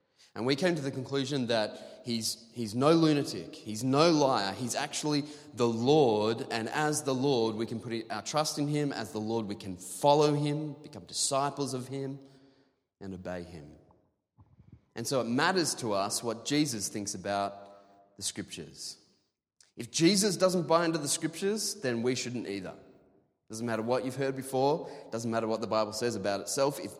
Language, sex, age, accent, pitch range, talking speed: English, male, 20-39, Australian, 100-135 Hz, 185 wpm